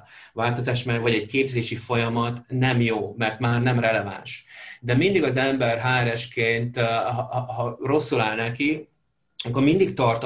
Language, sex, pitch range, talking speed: Hungarian, male, 115-140 Hz, 145 wpm